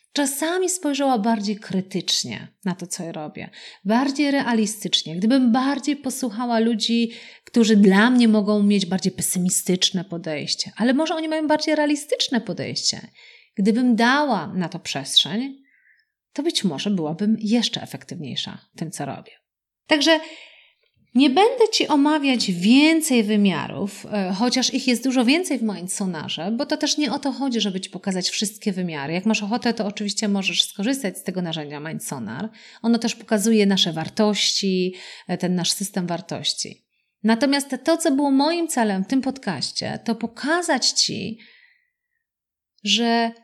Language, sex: Polish, female